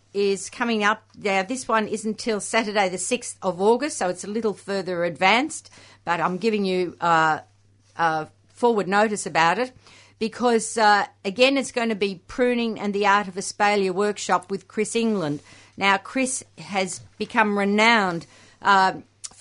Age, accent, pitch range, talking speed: 50-69, Australian, 185-225 Hz, 160 wpm